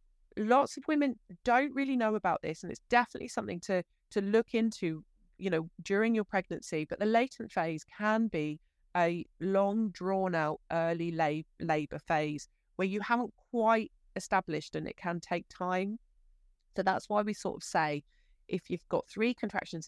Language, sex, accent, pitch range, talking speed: English, female, British, 160-215 Hz, 170 wpm